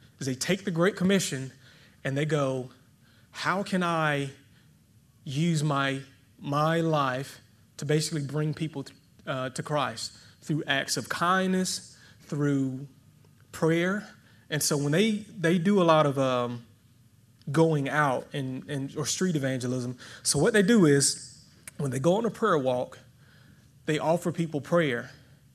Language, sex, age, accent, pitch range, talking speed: English, male, 30-49, American, 130-165 Hz, 150 wpm